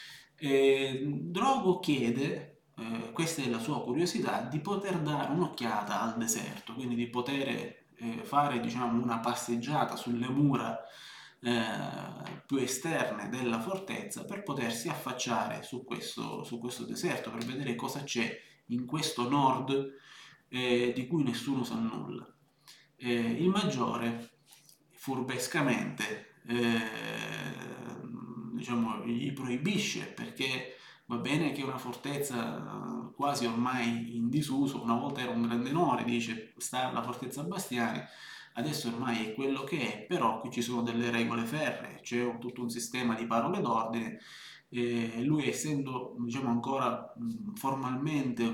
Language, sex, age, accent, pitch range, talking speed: Italian, male, 20-39, native, 115-140 Hz, 130 wpm